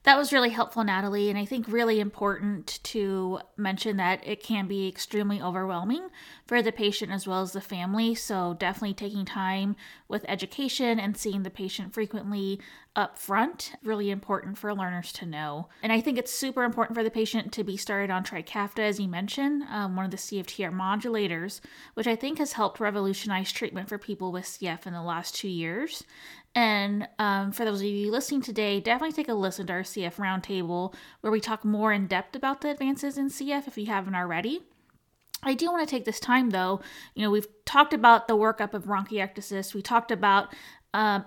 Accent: American